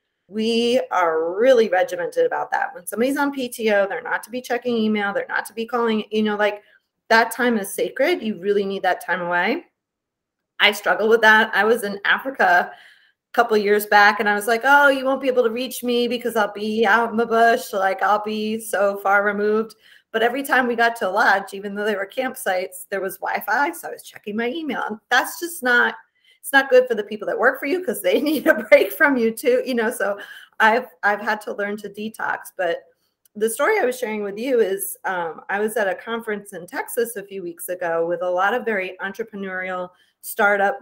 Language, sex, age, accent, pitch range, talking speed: English, female, 30-49, American, 200-255 Hz, 225 wpm